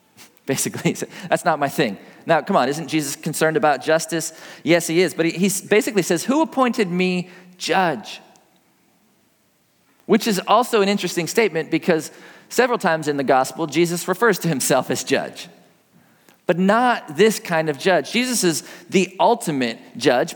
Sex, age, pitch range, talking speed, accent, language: male, 40-59, 170-215 Hz, 160 wpm, American, English